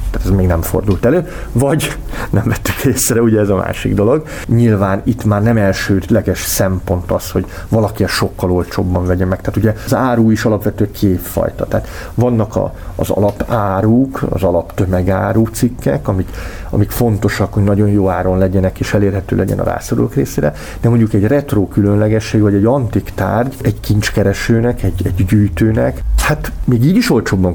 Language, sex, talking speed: Hungarian, male, 170 wpm